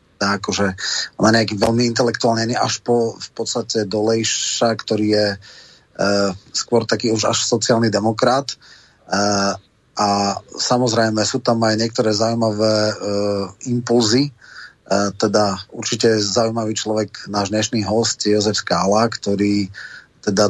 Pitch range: 105-115 Hz